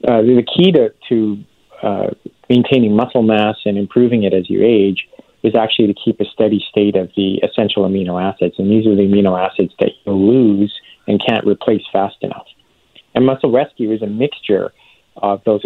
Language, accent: English, American